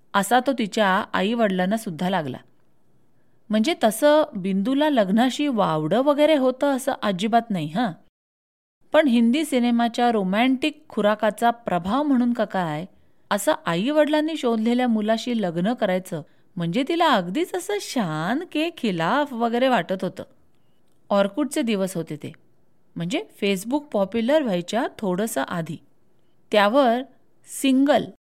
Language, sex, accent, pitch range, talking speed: Marathi, female, native, 195-265 Hz, 115 wpm